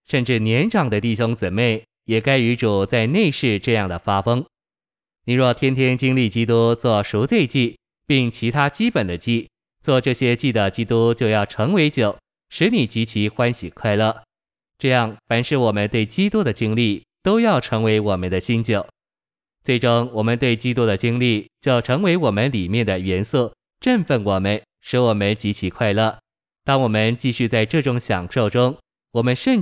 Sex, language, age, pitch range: male, Chinese, 20-39, 105-125 Hz